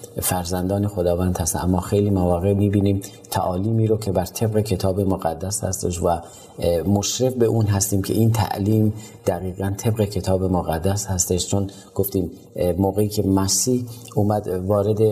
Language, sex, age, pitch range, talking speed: Persian, male, 40-59, 95-110 Hz, 140 wpm